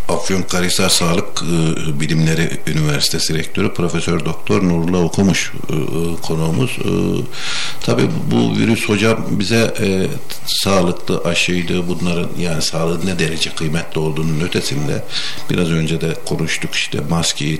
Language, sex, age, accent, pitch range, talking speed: Turkish, male, 60-79, native, 80-90 Hz, 115 wpm